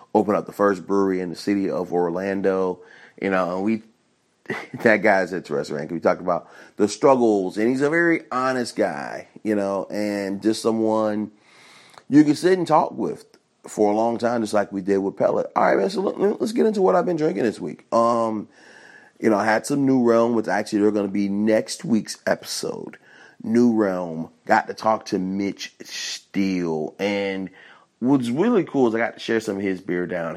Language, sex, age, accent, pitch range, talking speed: English, male, 30-49, American, 95-115 Hz, 205 wpm